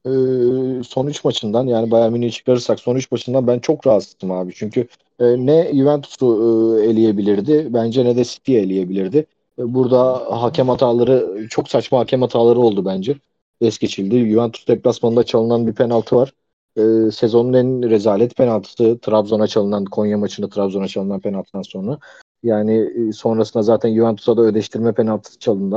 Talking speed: 140 wpm